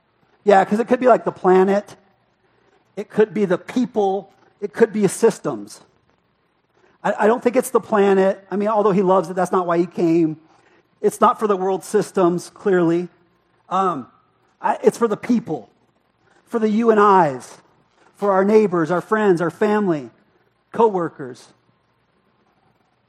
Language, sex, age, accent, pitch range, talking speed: English, male, 40-59, American, 165-205 Hz, 155 wpm